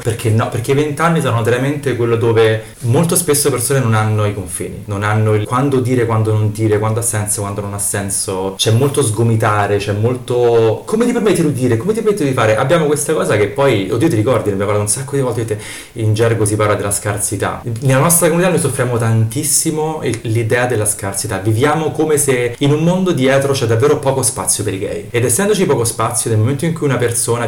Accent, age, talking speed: native, 30-49, 220 wpm